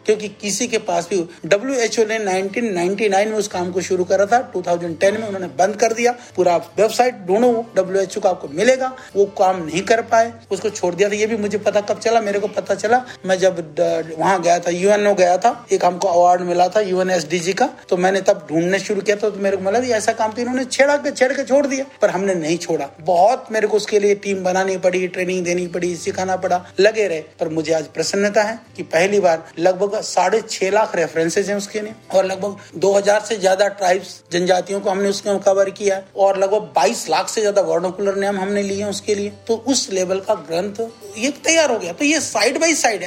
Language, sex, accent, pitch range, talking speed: Hindi, male, native, 185-235 Hz, 180 wpm